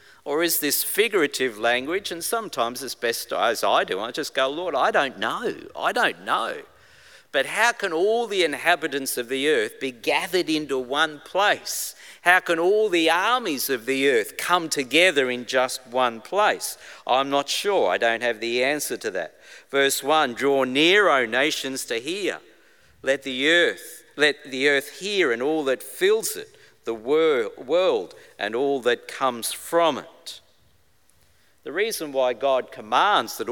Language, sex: English, male